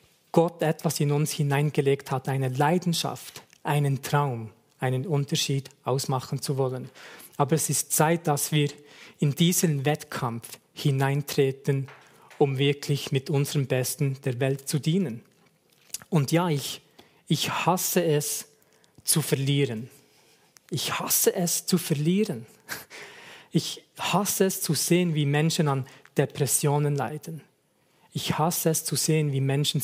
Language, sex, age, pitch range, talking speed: German, male, 40-59, 135-160 Hz, 130 wpm